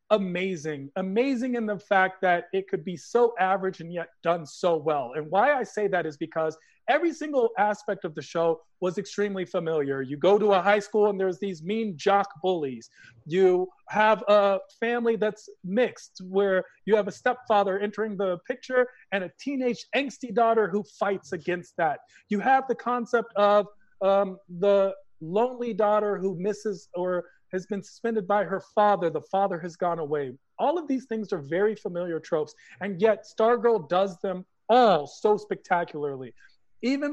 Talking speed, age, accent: 175 wpm, 40-59, American